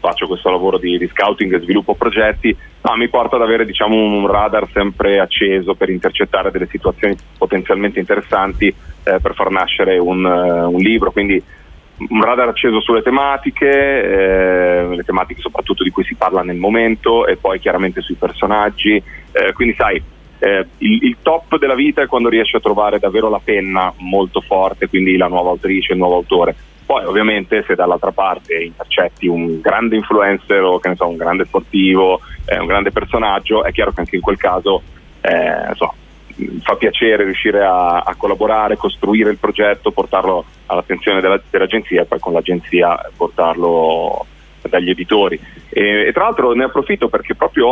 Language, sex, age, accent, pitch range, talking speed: Italian, male, 30-49, native, 90-110 Hz, 175 wpm